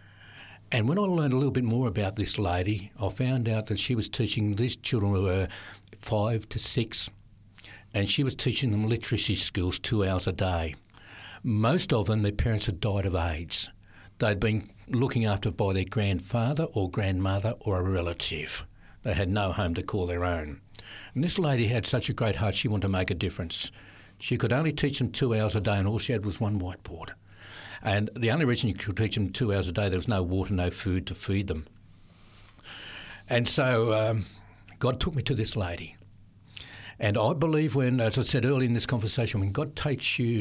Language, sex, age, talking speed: English, male, 60-79, 210 wpm